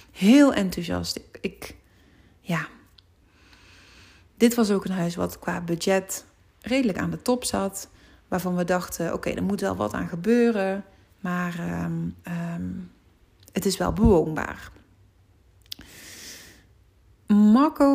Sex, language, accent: female, Dutch, Dutch